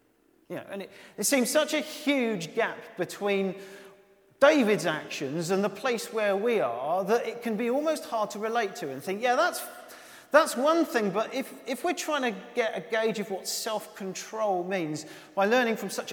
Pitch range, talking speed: 195-265 Hz, 195 wpm